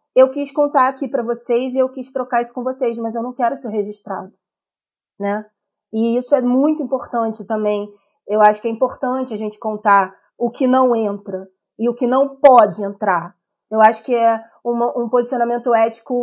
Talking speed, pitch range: 190 wpm, 210-265 Hz